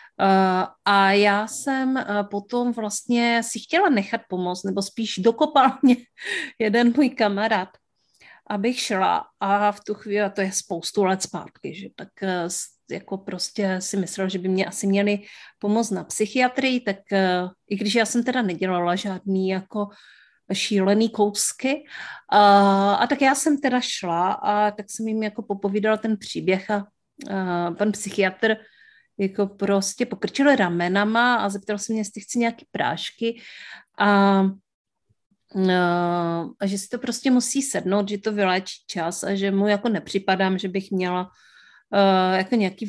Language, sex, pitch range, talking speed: Czech, female, 190-230 Hz, 150 wpm